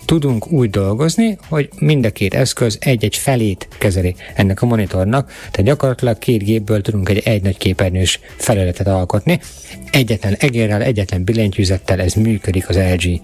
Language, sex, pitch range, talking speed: Hungarian, male, 100-130 Hz, 150 wpm